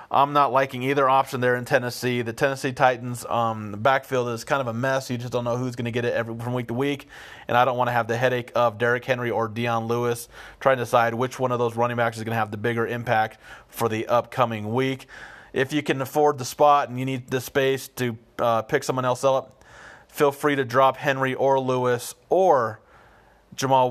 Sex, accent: male, American